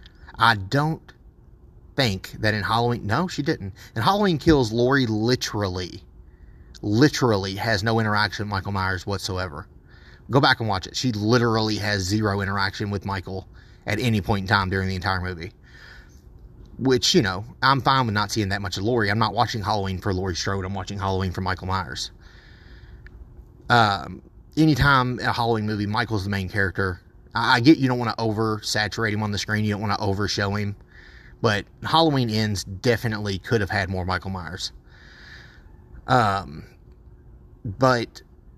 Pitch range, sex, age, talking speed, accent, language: 95-120 Hz, male, 30-49, 170 wpm, American, English